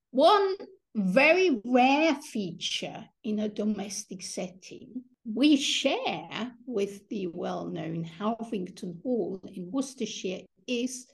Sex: female